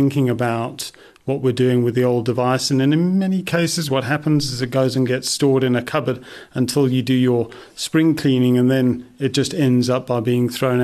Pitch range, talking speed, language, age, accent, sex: 125-140 Hz, 220 wpm, English, 40-59, British, male